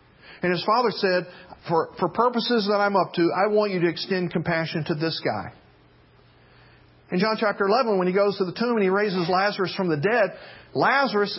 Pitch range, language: 155-225 Hz, English